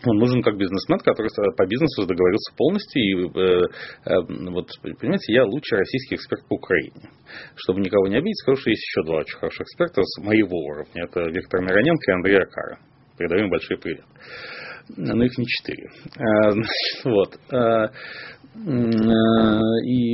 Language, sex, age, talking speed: Russian, male, 30-49, 160 wpm